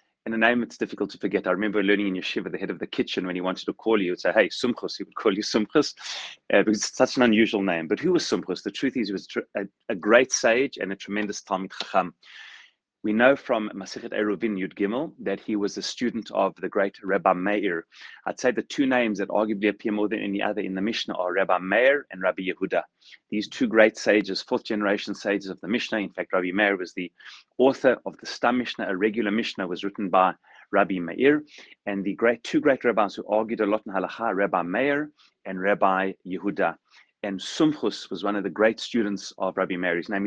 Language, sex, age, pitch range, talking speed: English, male, 30-49, 95-120 Hz, 230 wpm